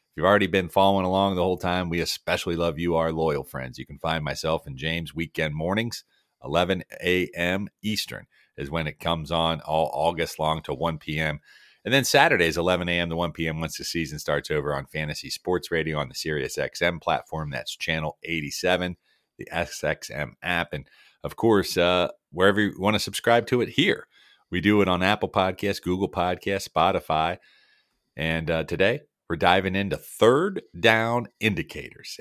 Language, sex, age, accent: English, male, 40-59, American